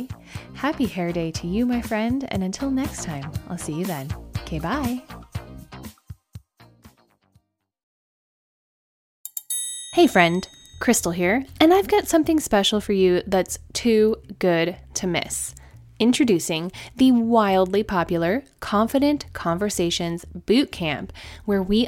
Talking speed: 120 wpm